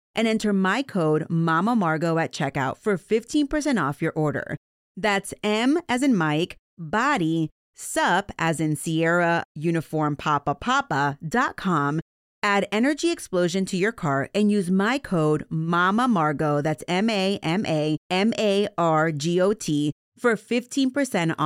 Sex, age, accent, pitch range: female, 30-49, American, 155-220 Hz